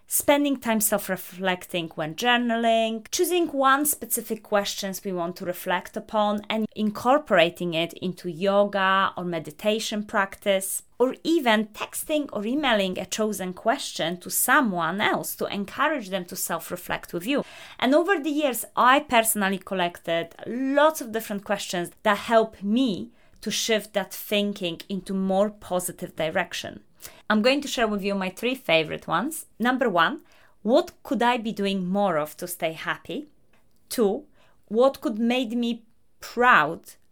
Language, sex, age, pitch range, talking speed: English, female, 30-49, 185-245 Hz, 145 wpm